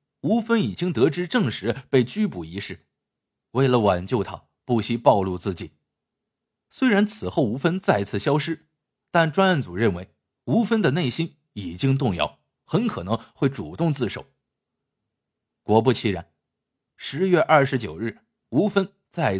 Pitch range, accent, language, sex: 105-170 Hz, native, Chinese, male